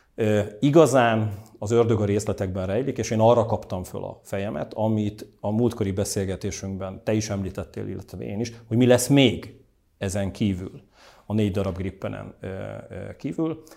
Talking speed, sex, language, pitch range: 150 wpm, male, Hungarian, 95-120 Hz